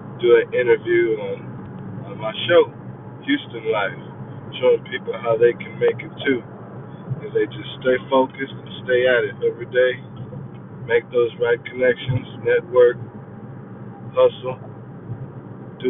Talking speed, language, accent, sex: 130 wpm, English, American, male